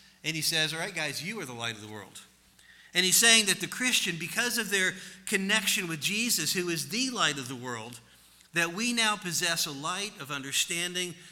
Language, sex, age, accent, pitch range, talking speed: English, male, 50-69, American, 135-180 Hz, 210 wpm